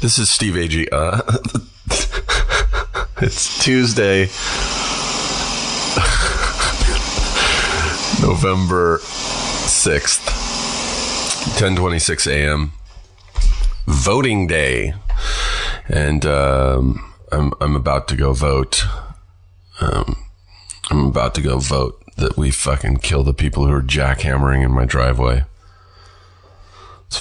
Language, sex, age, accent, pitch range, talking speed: English, male, 30-49, American, 70-90 Hz, 90 wpm